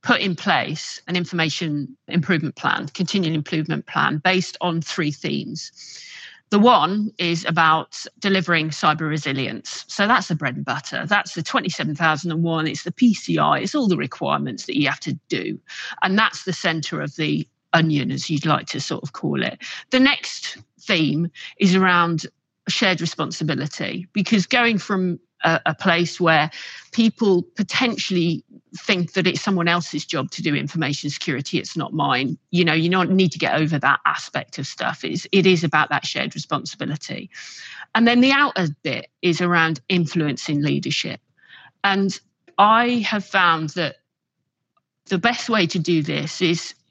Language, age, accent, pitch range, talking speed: English, 50-69, British, 160-190 Hz, 160 wpm